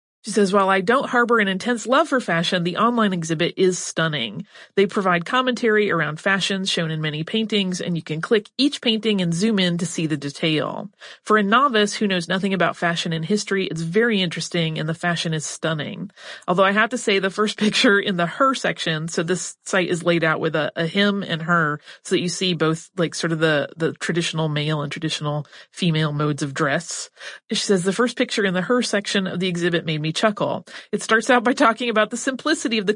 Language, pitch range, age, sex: English, 170-215 Hz, 30-49, female